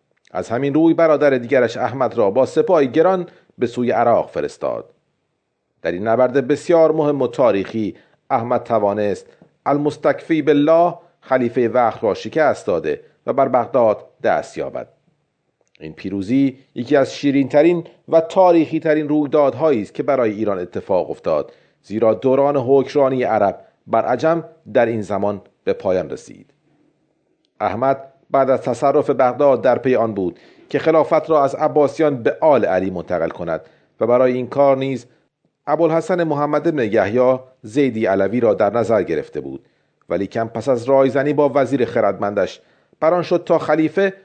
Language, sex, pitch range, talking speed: Persian, male, 125-165 Hz, 145 wpm